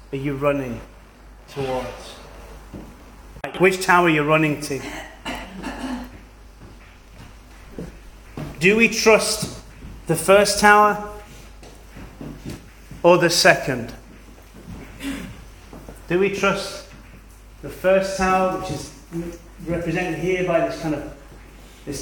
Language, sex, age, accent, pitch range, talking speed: English, male, 30-49, British, 140-210 Hz, 95 wpm